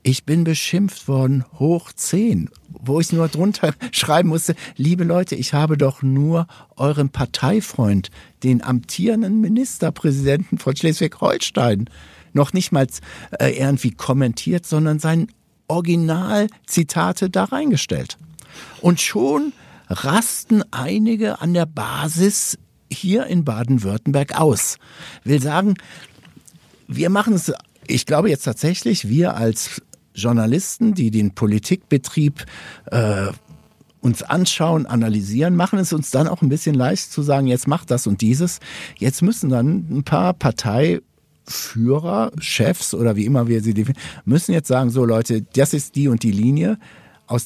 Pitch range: 125-170 Hz